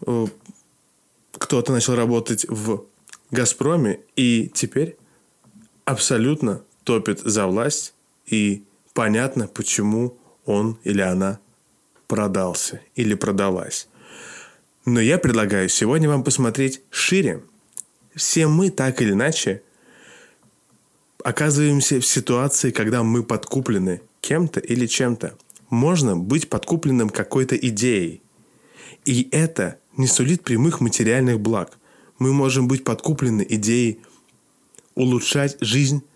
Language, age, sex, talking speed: Russian, 20-39, male, 100 wpm